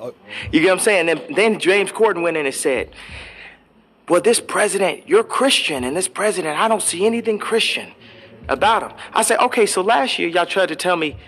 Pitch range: 165-240 Hz